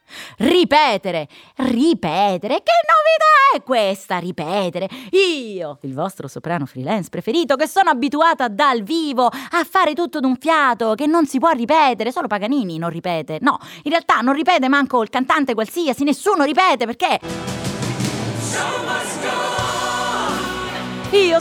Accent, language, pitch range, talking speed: native, Italian, 215-315 Hz, 125 wpm